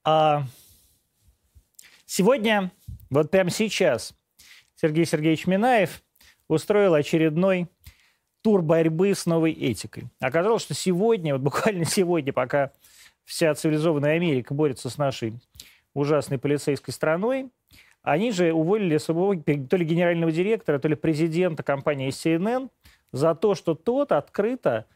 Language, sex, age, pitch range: Russian, male, 30-49, 145-185 Hz